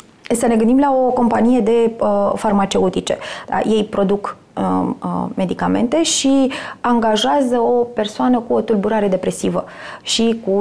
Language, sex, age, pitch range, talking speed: Romanian, female, 20-39, 195-245 Hz, 120 wpm